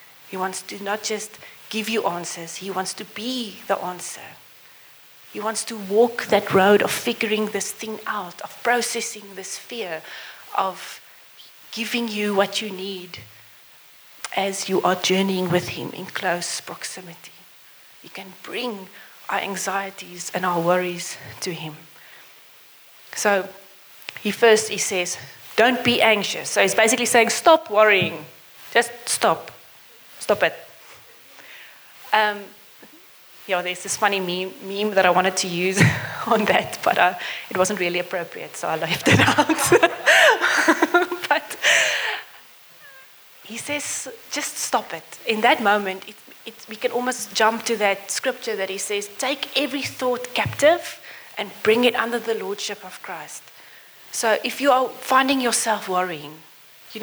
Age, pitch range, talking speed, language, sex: 30-49, 190-230 Hz, 145 wpm, English, female